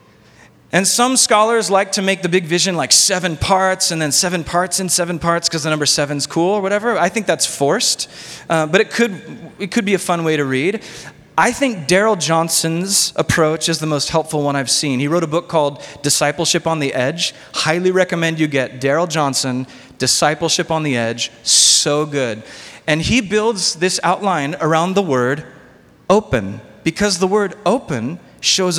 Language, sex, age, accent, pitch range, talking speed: English, male, 30-49, American, 150-190 Hz, 185 wpm